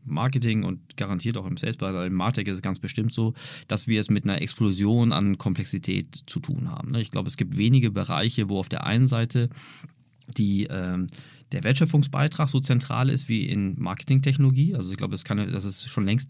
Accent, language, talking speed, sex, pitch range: German, German, 190 wpm, male, 100-135 Hz